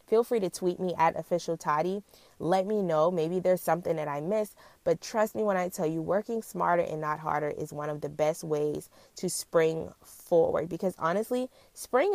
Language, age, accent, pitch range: English, 20-39, American, 155-195 Hz